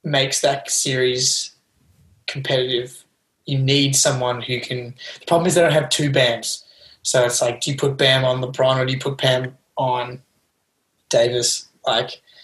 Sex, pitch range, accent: male, 120-140 Hz, Australian